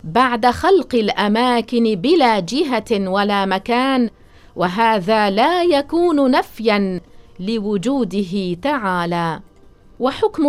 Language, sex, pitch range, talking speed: English, female, 205-275 Hz, 80 wpm